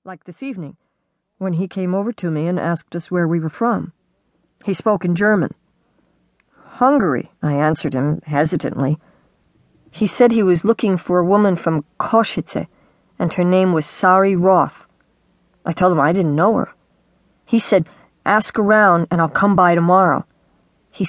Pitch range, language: 165-215 Hz, English